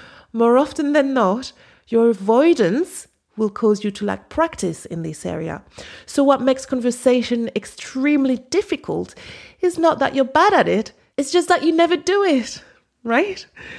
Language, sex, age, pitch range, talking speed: English, female, 30-49, 190-270 Hz, 155 wpm